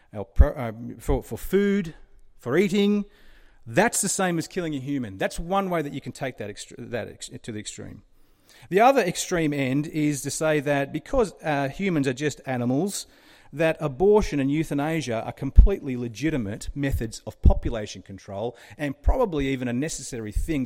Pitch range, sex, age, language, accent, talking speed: 115-170 Hz, male, 40-59, English, Australian, 170 wpm